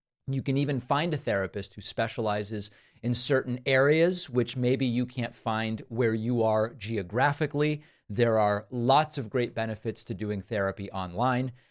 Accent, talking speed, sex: American, 155 wpm, male